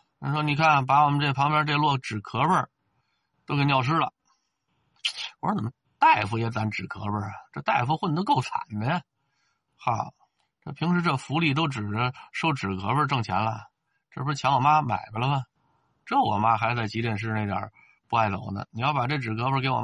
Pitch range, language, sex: 115-150 Hz, Chinese, male